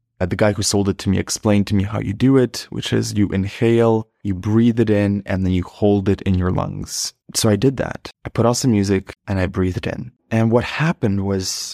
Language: English